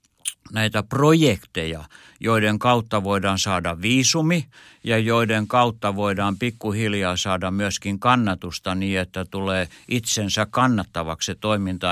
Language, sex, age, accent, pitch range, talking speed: Finnish, male, 60-79, native, 95-120 Hz, 105 wpm